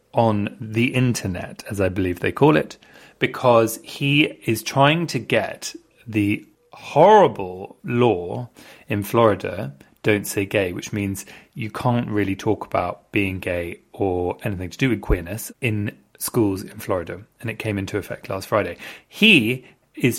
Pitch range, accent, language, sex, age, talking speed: 105-150 Hz, British, English, male, 30-49, 150 wpm